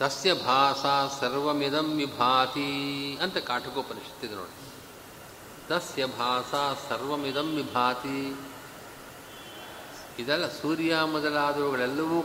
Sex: male